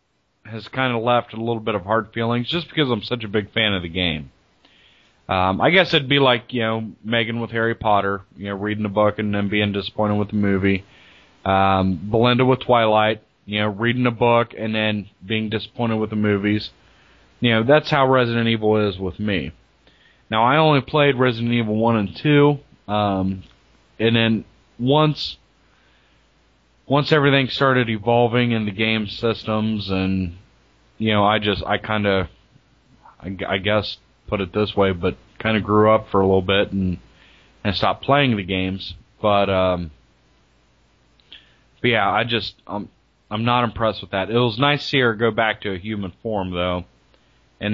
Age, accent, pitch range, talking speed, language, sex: 30-49, American, 95-115 Hz, 180 wpm, English, male